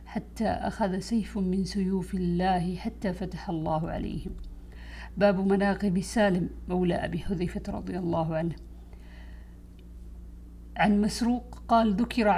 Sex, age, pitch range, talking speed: female, 50-69, 165-205 Hz, 110 wpm